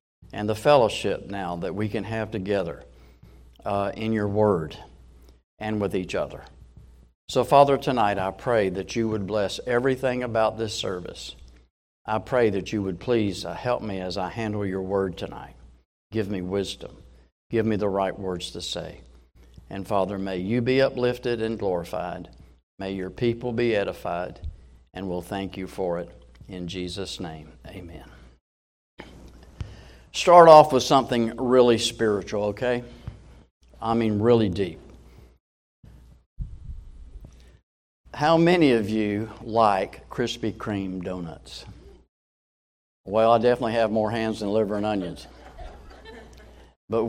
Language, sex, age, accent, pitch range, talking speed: English, male, 50-69, American, 75-115 Hz, 135 wpm